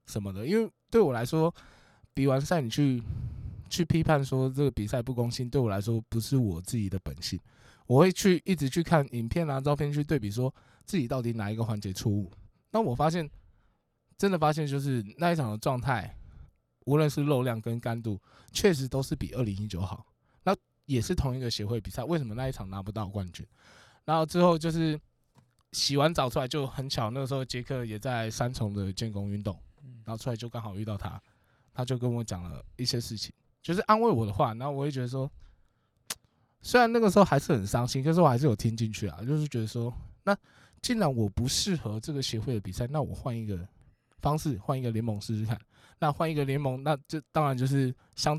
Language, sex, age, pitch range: Chinese, male, 20-39, 110-145 Hz